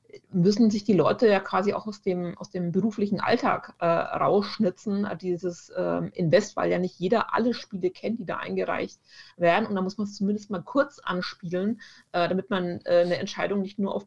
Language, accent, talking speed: German, German, 200 wpm